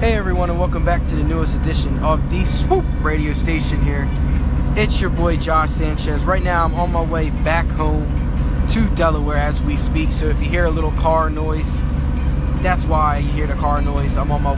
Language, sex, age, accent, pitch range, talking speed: English, male, 20-39, American, 65-70 Hz, 210 wpm